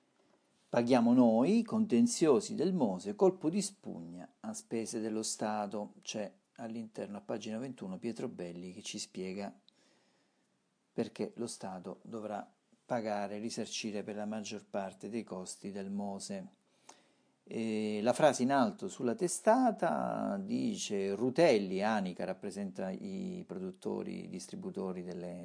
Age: 50-69